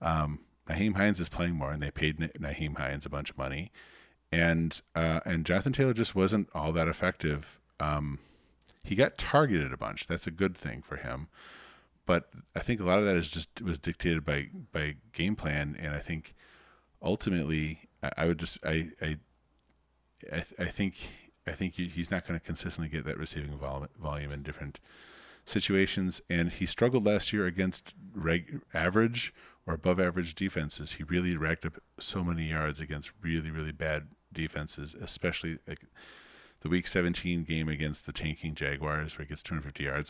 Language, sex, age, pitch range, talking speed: English, male, 40-59, 75-90 Hz, 180 wpm